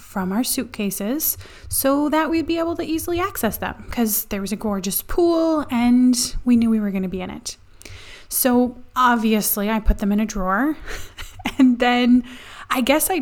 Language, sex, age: English, female, 20-39